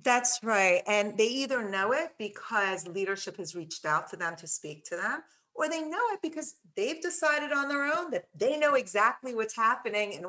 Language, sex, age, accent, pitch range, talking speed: English, female, 30-49, American, 175-225 Hz, 205 wpm